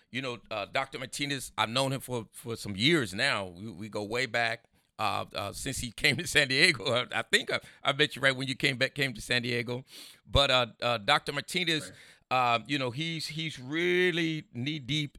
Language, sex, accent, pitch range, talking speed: English, male, American, 105-130 Hz, 210 wpm